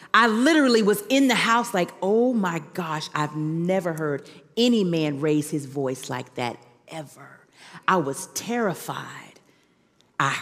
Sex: female